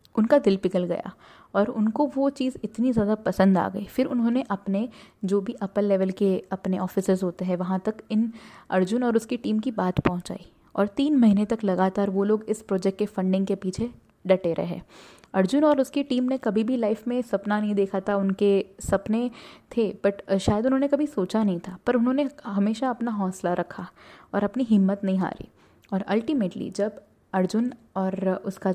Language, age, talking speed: Hindi, 20-39, 190 wpm